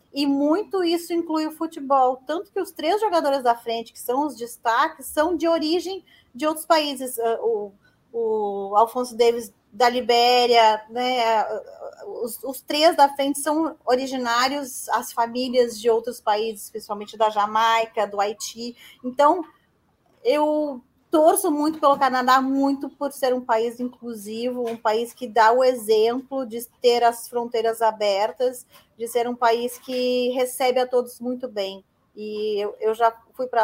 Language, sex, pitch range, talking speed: Portuguese, female, 225-265 Hz, 155 wpm